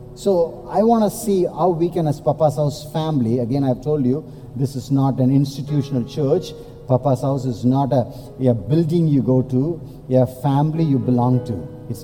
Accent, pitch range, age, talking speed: Indian, 130-170 Hz, 50-69, 190 wpm